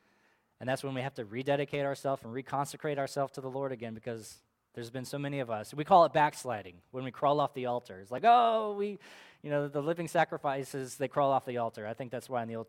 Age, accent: 20-39, American